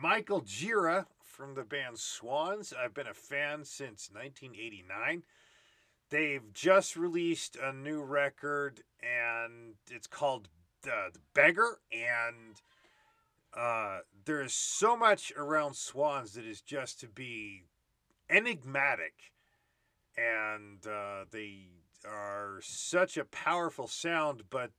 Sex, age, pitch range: male, 40-59, 110-165 Hz